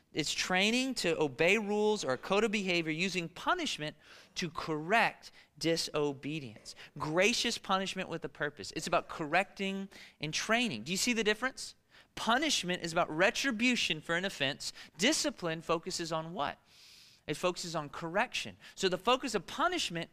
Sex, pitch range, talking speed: male, 150-210 Hz, 150 wpm